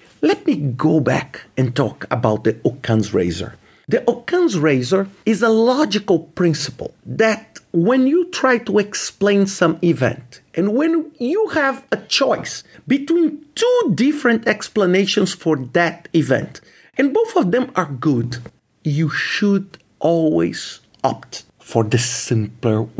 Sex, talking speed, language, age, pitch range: male, 135 wpm, English, 50-69, 125-210 Hz